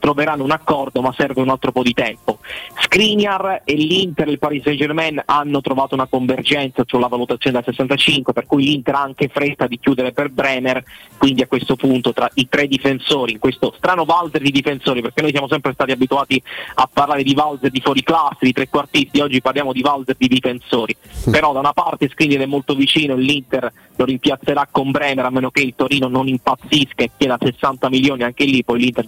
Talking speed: 210 wpm